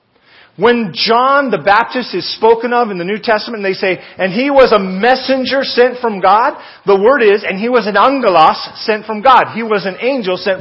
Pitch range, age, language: 190-240 Hz, 40-59, English